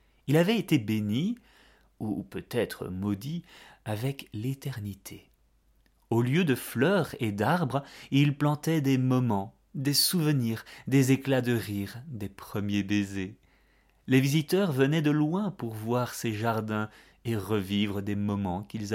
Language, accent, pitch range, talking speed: French, French, 105-135 Hz, 135 wpm